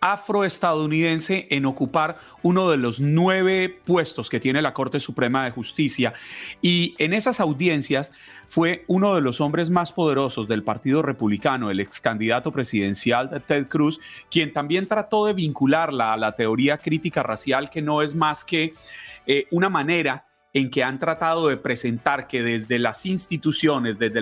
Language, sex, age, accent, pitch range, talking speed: Spanish, male, 30-49, Colombian, 130-170 Hz, 160 wpm